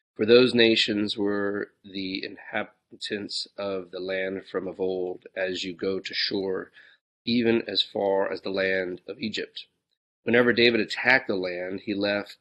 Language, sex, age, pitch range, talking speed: English, male, 40-59, 95-105 Hz, 155 wpm